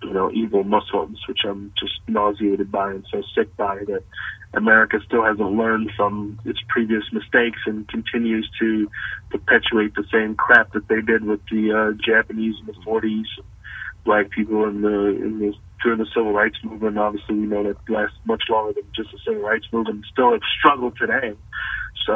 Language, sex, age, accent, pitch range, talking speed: English, male, 30-49, American, 105-120 Hz, 185 wpm